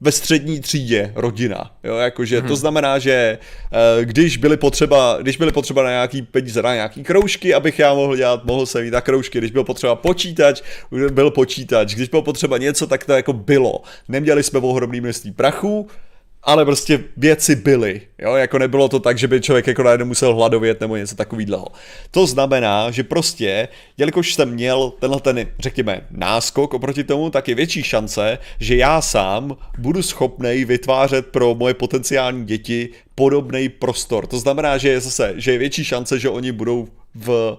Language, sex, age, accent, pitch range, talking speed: Czech, male, 30-49, native, 120-145 Hz, 170 wpm